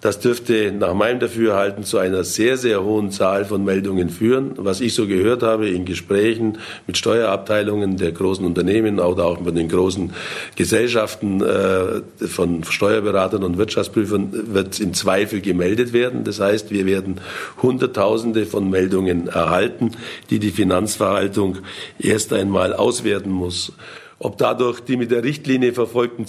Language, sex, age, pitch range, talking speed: German, male, 50-69, 95-120 Hz, 145 wpm